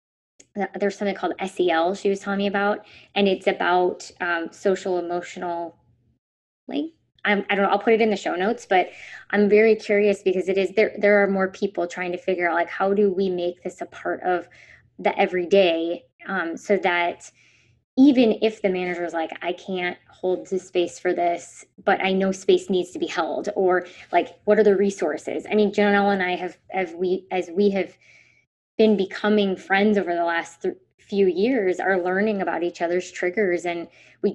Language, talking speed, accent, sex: English, 195 wpm, American, female